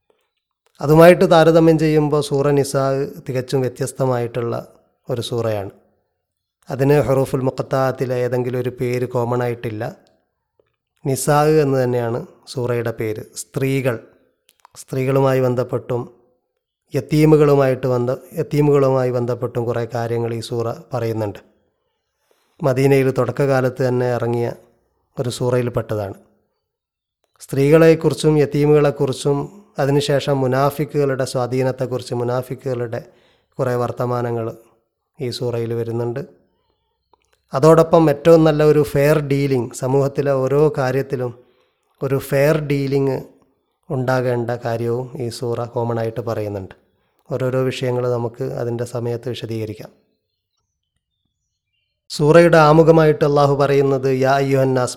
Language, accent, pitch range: Malayalam, native, 120-145 Hz